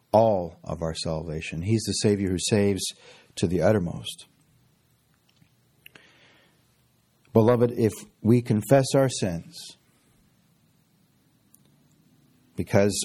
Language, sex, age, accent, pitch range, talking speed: English, male, 50-69, American, 95-125 Hz, 85 wpm